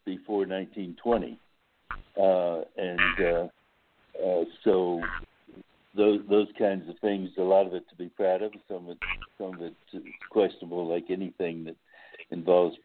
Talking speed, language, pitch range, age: 145 wpm, English, 85-105 Hz, 60-79